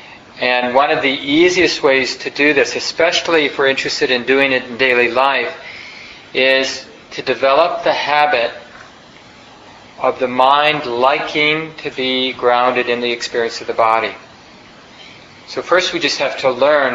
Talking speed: 155 wpm